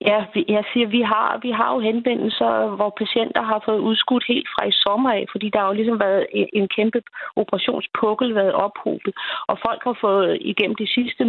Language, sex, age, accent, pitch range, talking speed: Danish, female, 30-49, native, 200-245 Hz, 195 wpm